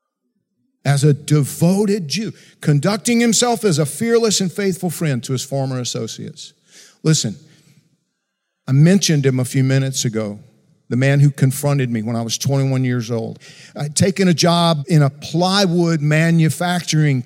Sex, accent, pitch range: male, American, 125-180 Hz